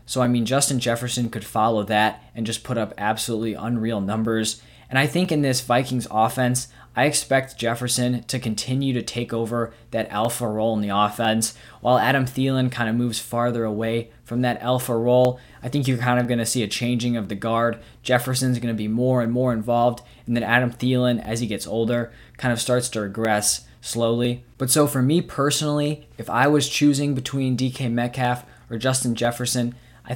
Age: 20-39